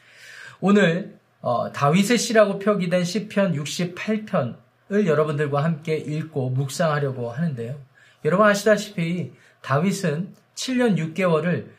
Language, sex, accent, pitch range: Korean, male, native, 145-200 Hz